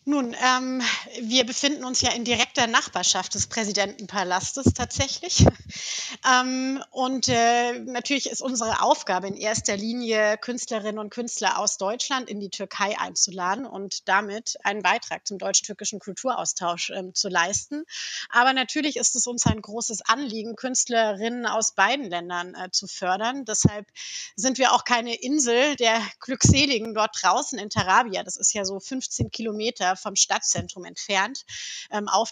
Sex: female